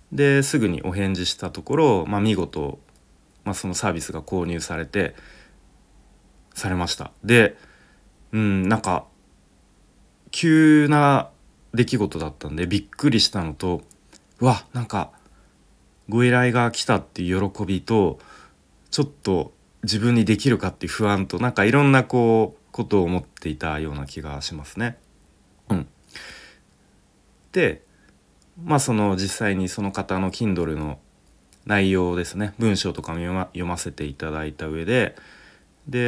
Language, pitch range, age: Japanese, 80-110 Hz, 30-49